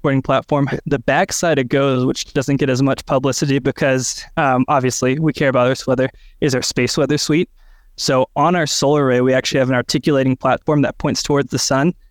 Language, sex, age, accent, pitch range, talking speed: English, male, 20-39, American, 130-150 Hz, 200 wpm